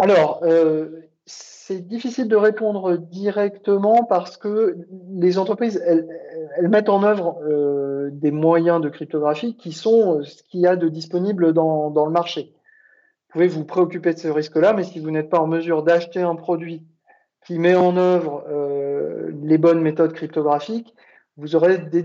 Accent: French